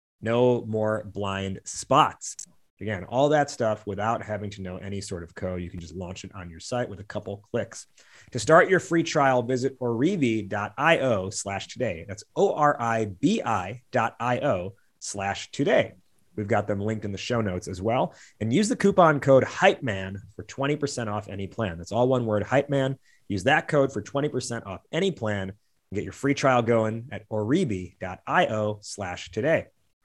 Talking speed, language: 175 wpm, English